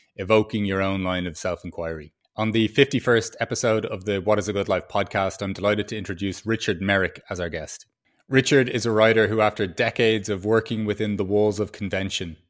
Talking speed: 195 wpm